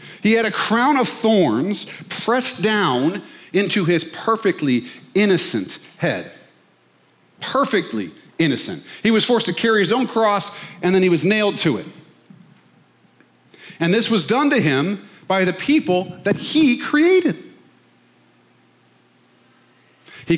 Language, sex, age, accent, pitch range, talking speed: English, male, 40-59, American, 130-195 Hz, 125 wpm